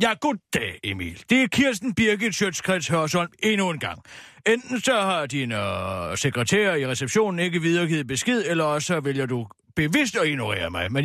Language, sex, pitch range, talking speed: Danish, male, 130-195 Hz, 175 wpm